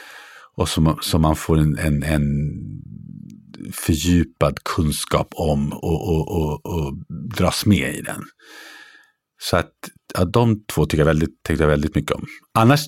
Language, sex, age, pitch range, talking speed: English, male, 50-69, 80-105 Hz, 140 wpm